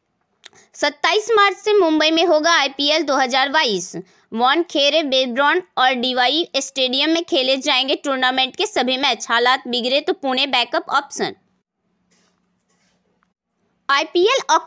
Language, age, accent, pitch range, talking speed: Hindi, 20-39, native, 275-375 Hz, 95 wpm